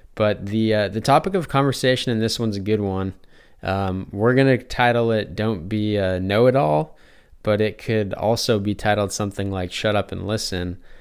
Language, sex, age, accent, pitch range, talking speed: English, male, 20-39, American, 95-110 Hz, 190 wpm